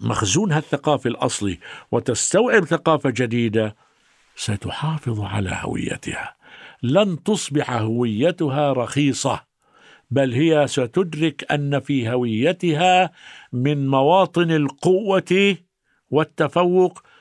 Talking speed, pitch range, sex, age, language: 80 wpm, 110-155 Hz, male, 50-69, Arabic